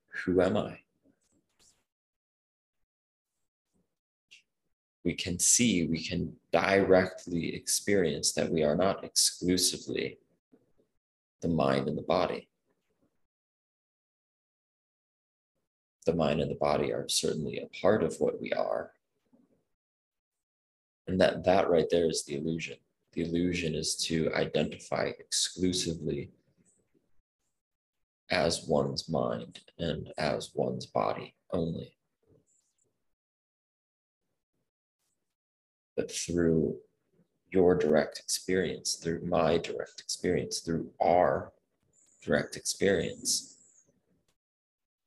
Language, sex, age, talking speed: English, male, 20-39, 90 wpm